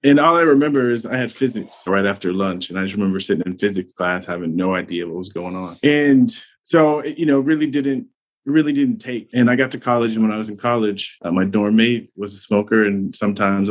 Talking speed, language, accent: 245 wpm, English, American